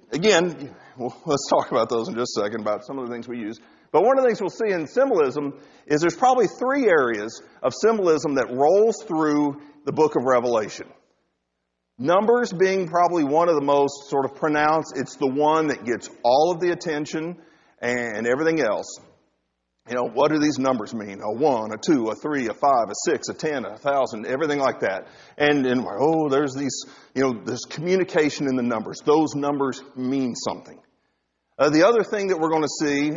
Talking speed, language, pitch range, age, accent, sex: 200 wpm, English, 115-160 Hz, 40-59, American, male